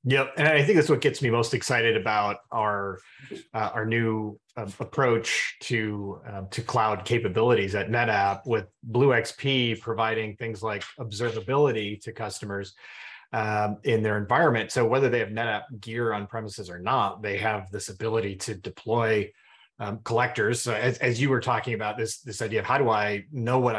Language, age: English, 30-49